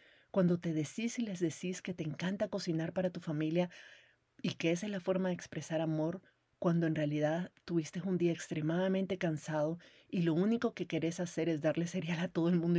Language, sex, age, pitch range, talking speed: Spanish, female, 40-59, 155-185 Hz, 200 wpm